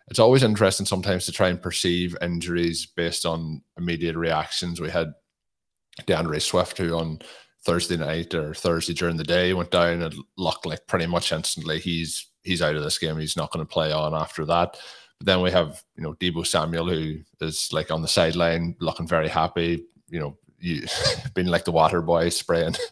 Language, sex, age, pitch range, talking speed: English, male, 20-39, 80-90 Hz, 190 wpm